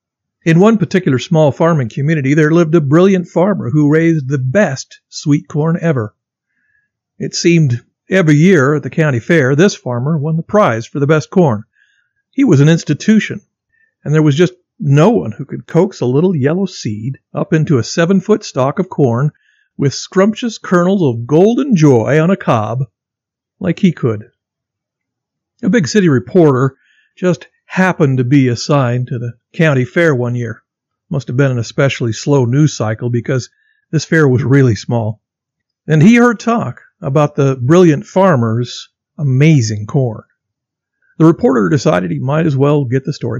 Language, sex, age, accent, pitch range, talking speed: English, male, 50-69, American, 130-175 Hz, 165 wpm